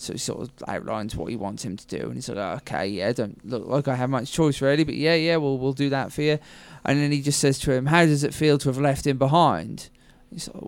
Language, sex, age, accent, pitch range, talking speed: English, male, 20-39, British, 120-140 Hz, 290 wpm